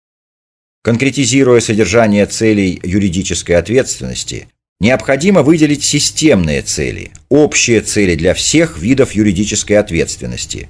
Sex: male